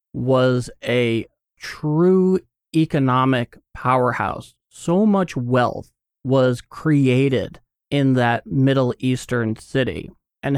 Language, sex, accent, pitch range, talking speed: English, male, American, 120-135 Hz, 90 wpm